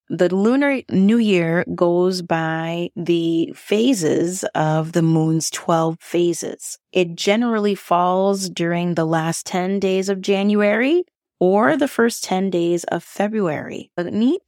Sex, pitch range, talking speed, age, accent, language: female, 160-195 Hz, 135 wpm, 30-49, American, English